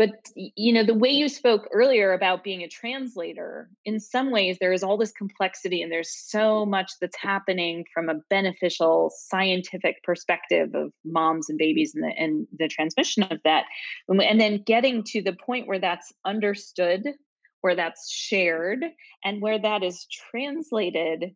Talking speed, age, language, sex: 165 wpm, 20-39, English, female